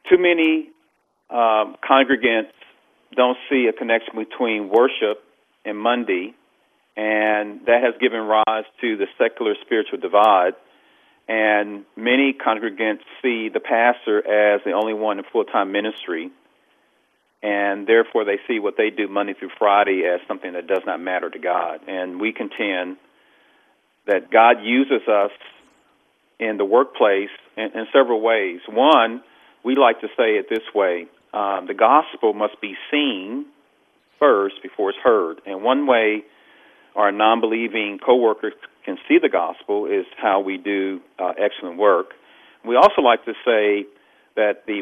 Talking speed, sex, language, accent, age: 145 wpm, male, English, American, 40-59